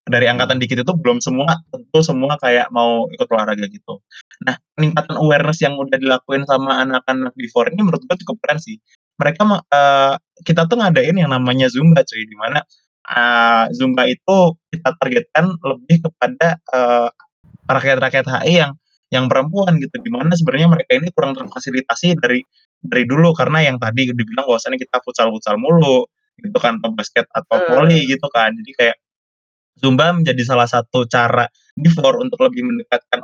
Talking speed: 160 wpm